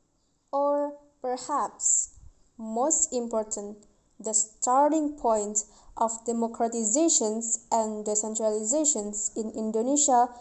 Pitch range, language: 220-260 Hz, English